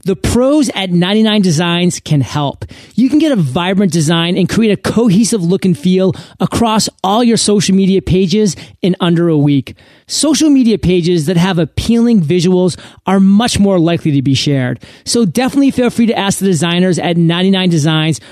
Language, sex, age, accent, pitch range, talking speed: English, male, 30-49, American, 160-210 Hz, 175 wpm